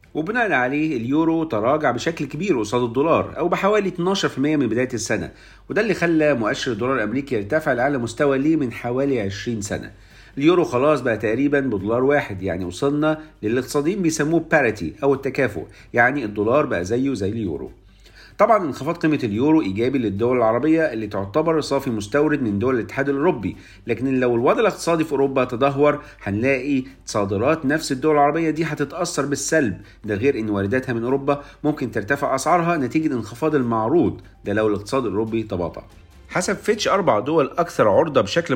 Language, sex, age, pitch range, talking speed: Arabic, male, 50-69, 110-150 Hz, 155 wpm